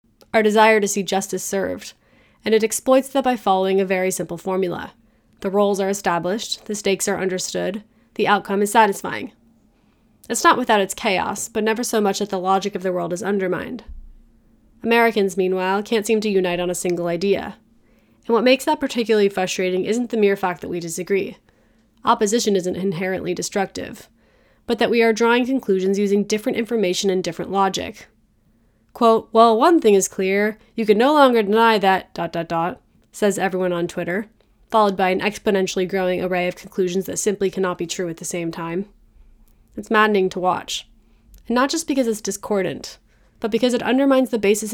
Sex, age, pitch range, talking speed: female, 20-39, 185-220 Hz, 180 wpm